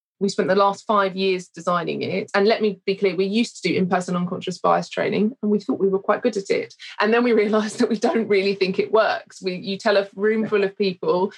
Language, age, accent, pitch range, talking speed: English, 20-39, British, 190-215 Hz, 265 wpm